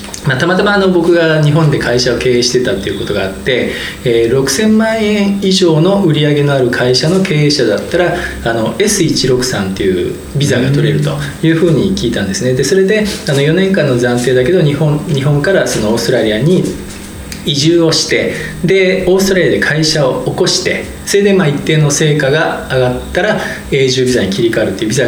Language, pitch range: Japanese, 125-175 Hz